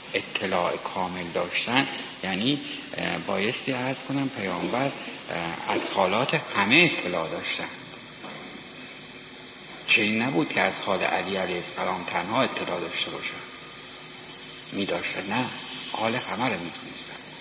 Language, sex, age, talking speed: Persian, male, 60-79, 105 wpm